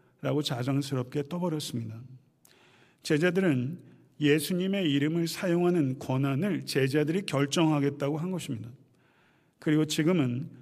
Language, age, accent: Korean, 40-59, native